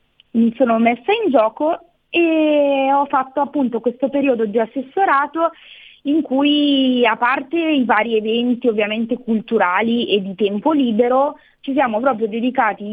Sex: female